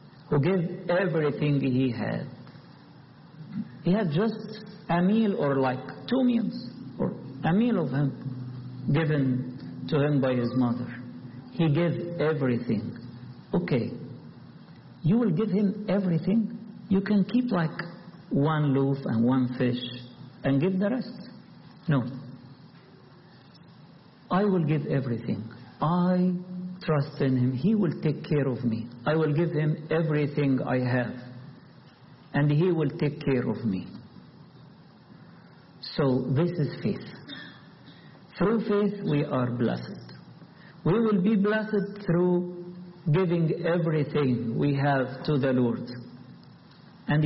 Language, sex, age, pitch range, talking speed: English, male, 50-69, 130-180 Hz, 125 wpm